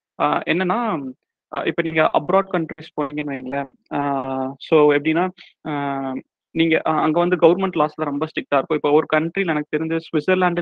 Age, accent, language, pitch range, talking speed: 30-49, native, Tamil, 145-165 Hz, 125 wpm